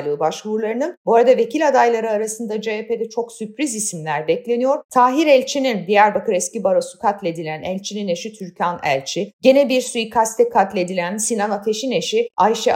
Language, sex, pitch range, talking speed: Turkish, female, 205-280 Hz, 130 wpm